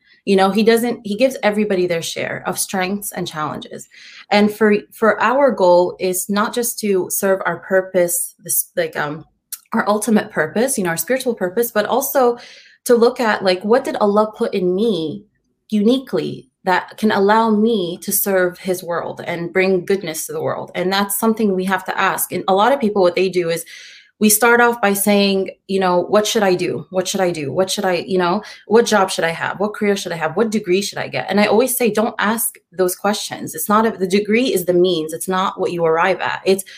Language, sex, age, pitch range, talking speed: English, female, 30-49, 180-215 Hz, 220 wpm